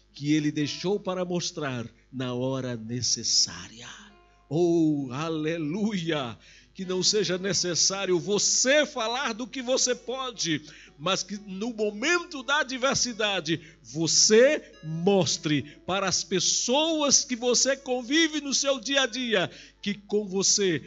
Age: 50-69